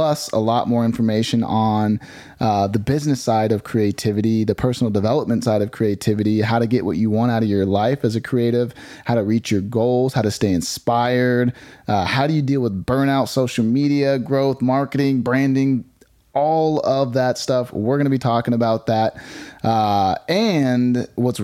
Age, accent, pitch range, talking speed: 30-49, American, 110-135 Hz, 185 wpm